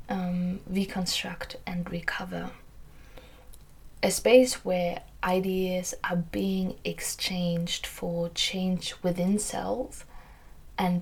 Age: 20-39